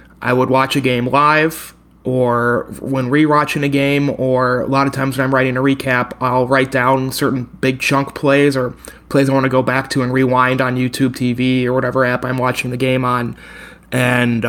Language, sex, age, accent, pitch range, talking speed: English, male, 30-49, American, 125-140 Hz, 205 wpm